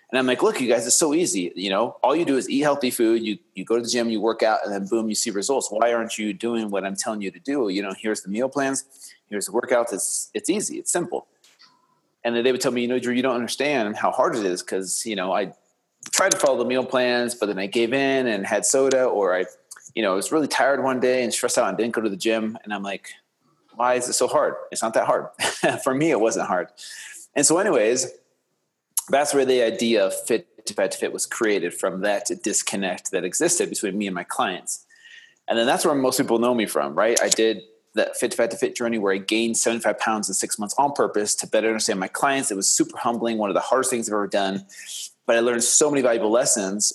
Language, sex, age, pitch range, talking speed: English, male, 30-49, 105-135 Hz, 260 wpm